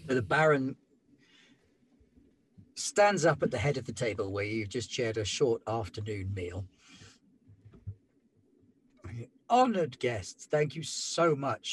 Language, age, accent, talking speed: English, 50-69, British, 125 wpm